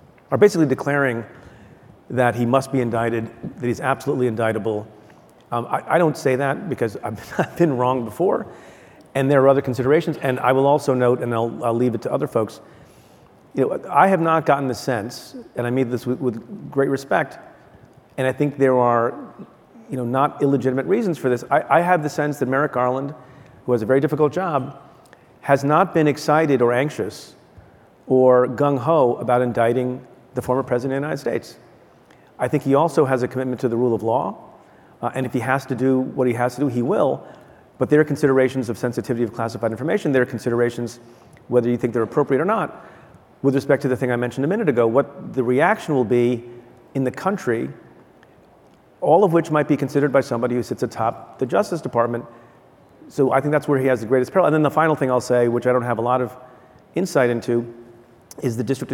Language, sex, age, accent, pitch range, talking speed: English, male, 40-59, American, 120-140 Hz, 210 wpm